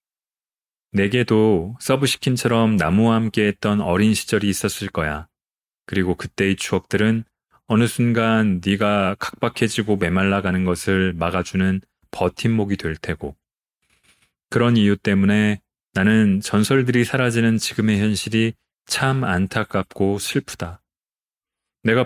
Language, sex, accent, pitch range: Korean, male, native, 95-115 Hz